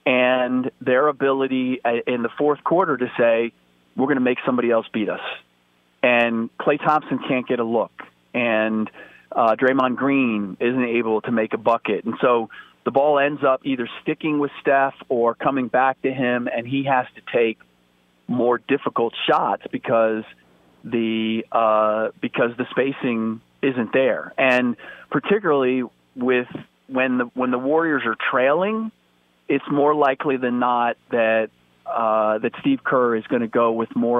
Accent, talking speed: American, 160 wpm